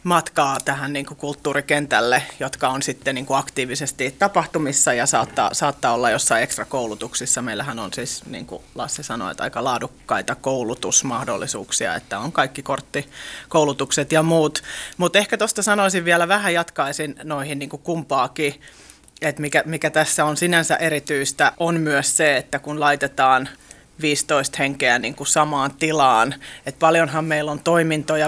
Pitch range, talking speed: 140-165 Hz, 140 wpm